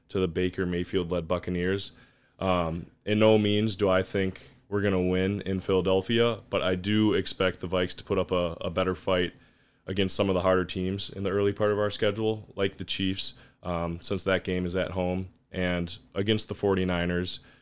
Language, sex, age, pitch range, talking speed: English, male, 20-39, 90-105 Hz, 200 wpm